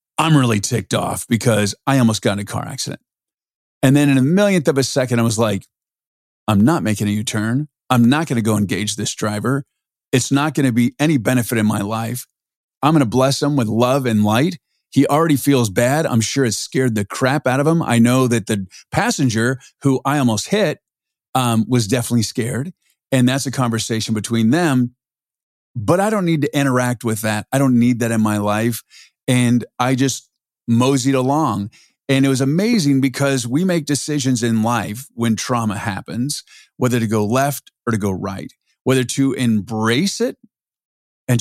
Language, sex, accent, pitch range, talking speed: English, male, American, 115-135 Hz, 195 wpm